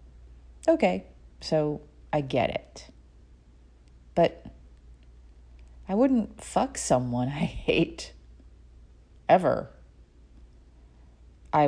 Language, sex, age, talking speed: English, female, 40-59, 70 wpm